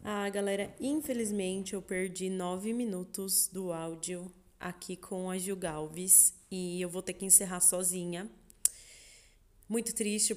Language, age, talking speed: Portuguese, 20-39, 135 wpm